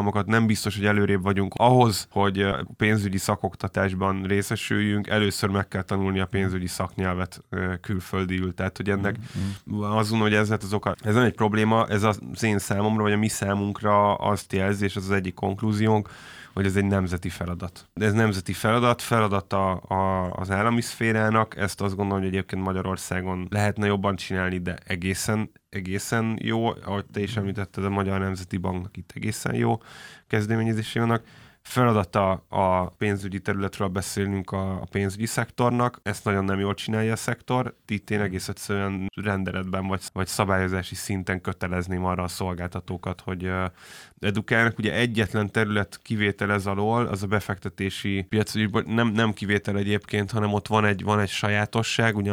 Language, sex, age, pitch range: Hungarian, male, 20-39, 95-110 Hz